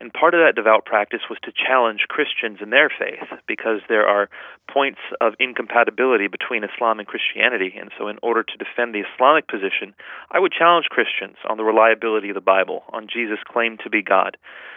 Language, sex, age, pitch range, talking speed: English, male, 40-59, 105-120 Hz, 195 wpm